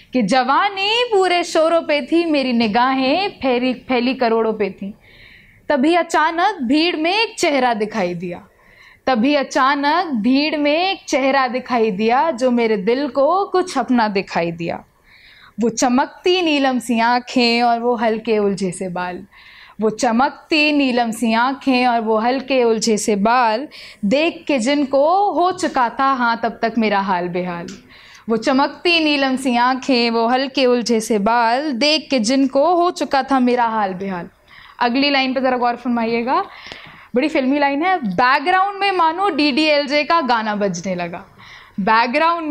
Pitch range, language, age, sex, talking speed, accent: 230-300 Hz, Hindi, 20-39, female, 150 wpm, native